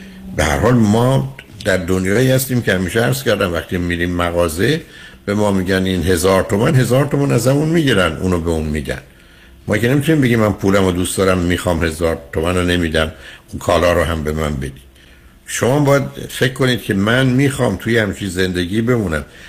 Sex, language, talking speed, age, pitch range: male, Persian, 180 wpm, 60-79, 85-125 Hz